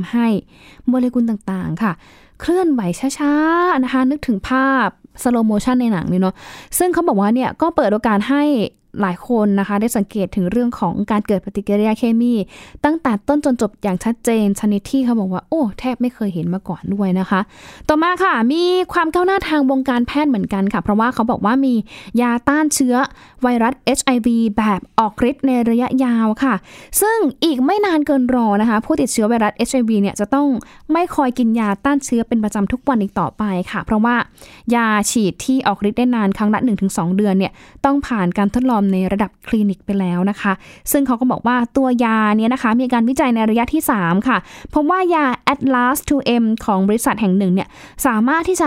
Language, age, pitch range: Thai, 10-29, 210-270 Hz